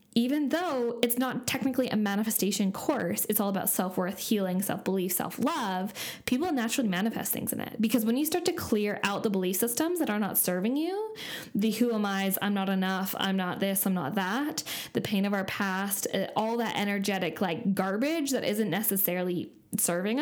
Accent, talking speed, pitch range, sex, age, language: American, 195 wpm, 195-250 Hz, female, 10-29, English